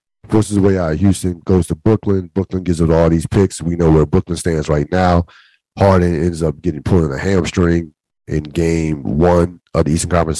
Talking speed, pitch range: 215 wpm, 80-95 Hz